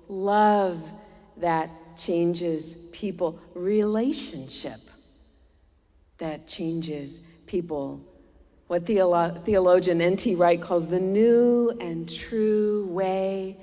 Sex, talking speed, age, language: female, 85 wpm, 50-69, English